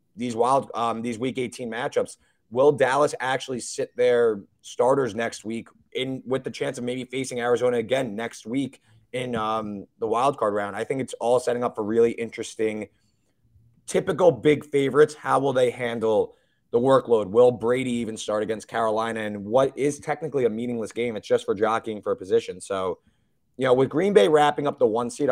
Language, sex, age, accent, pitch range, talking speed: English, male, 20-39, American, 115-160 Hz, 190 wpm